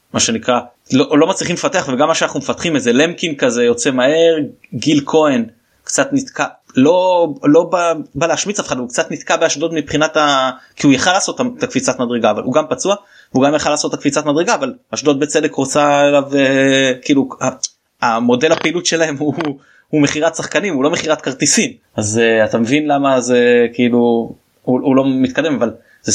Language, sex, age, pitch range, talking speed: Hebrew, male, 20-39, 120-155 Hz, 180 wpm